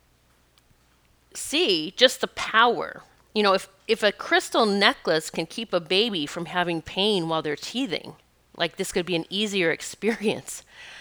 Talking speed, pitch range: 155 wpm, 180-245 Hz